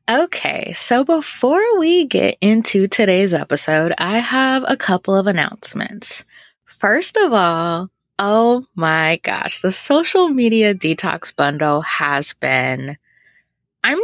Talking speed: 120 wpm